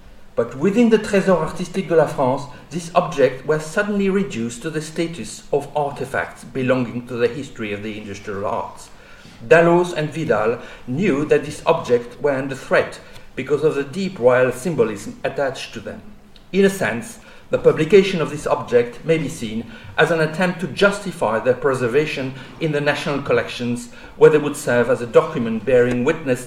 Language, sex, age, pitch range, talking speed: English, male, 50-69, 130-180 Hz, 170 wpm